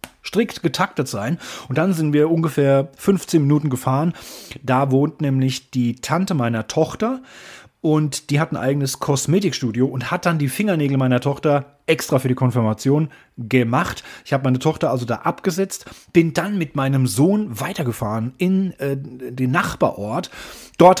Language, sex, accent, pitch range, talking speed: German, male, German, 125-155 Hz, 155 wpm